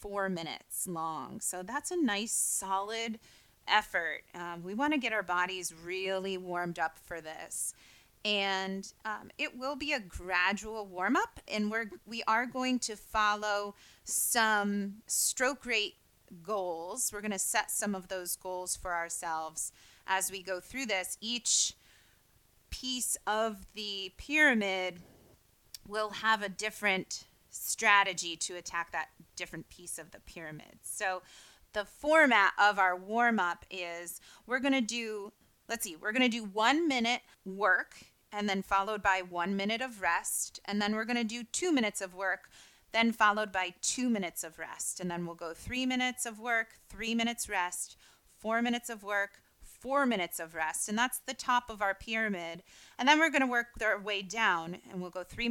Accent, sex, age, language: American, female, 30-49, English